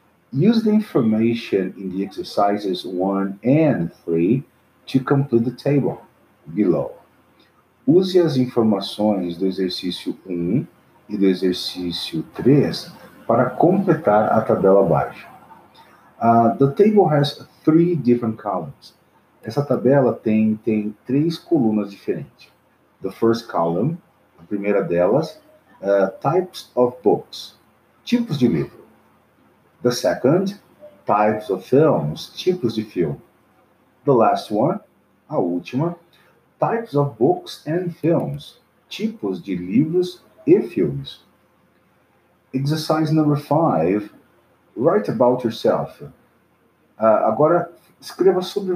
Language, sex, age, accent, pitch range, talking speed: English, male, 50-69, Brazilian, 100-170 Hz, 110 wpm